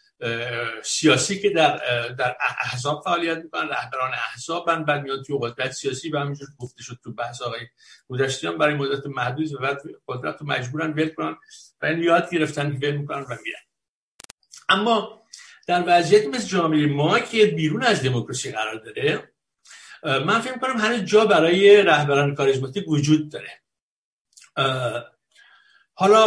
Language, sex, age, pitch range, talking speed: Persian, male, 60-79, 135-205 Hz, 140 wpm